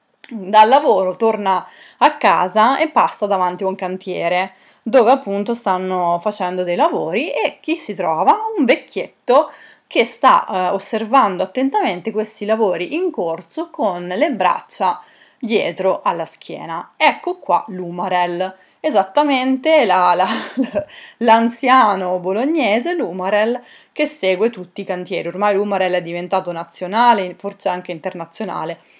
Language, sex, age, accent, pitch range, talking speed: Italian, female, 30-49, native, 180-235 Hz, 120 wpm